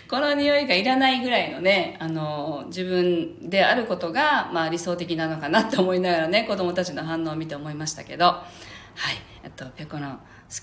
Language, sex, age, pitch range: Japanese, female, 40-59, 160-270 Hz